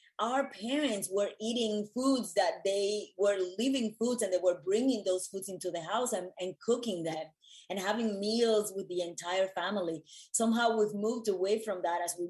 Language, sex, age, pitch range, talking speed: English, female, 30-49, 180-225 Hz, 185 wpm